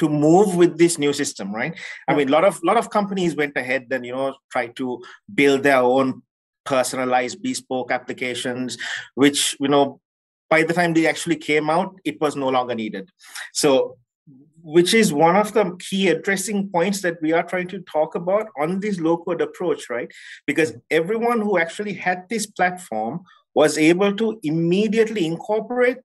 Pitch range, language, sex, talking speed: 135-185 Hz, English, male, 175 wpm